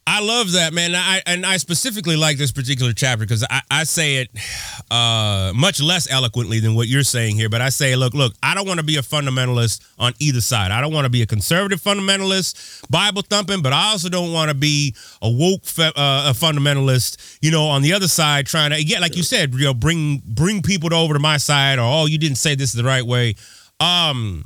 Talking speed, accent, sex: 235 wpm, American, male